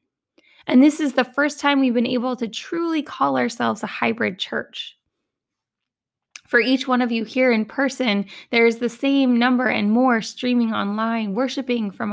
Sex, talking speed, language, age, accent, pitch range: female, 175 wpm, English, 20-39, American, 215-255 Hz